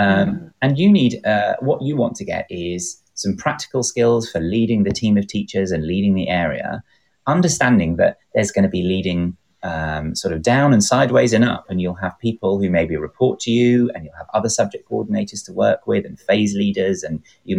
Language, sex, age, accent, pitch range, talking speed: English, male, 30-49, British, 85-115 Hz, 210 wpm